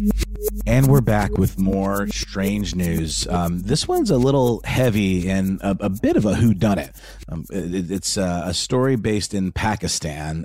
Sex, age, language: male, 30-49, English